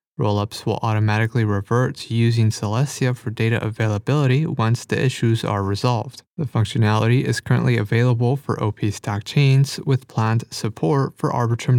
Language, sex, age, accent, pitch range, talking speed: English, male, 30-49, American, 110-135 Hz, 150 wpm